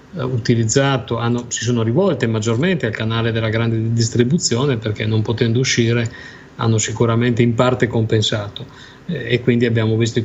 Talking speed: 140 wpm